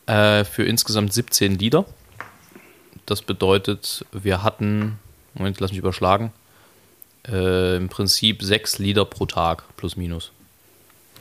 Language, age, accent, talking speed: German, 20-39, German, 110 wpm